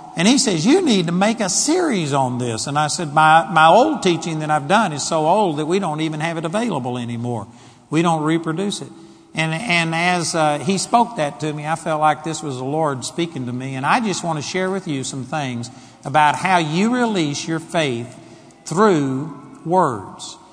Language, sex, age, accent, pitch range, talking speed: English, male, 60-79, American, 140-175 Hz, 215 wpm